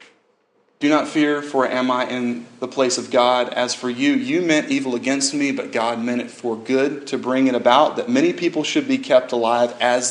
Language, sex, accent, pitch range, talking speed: English, male, American, 120-150 Hz, 220 wpm